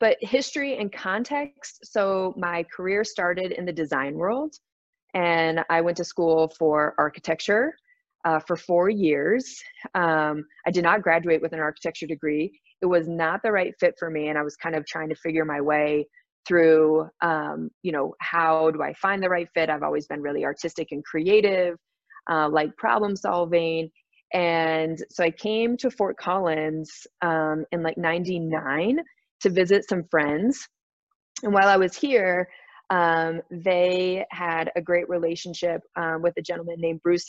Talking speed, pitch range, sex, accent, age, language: 165 wpm, 160-185 Hz, female, American, 20-39, English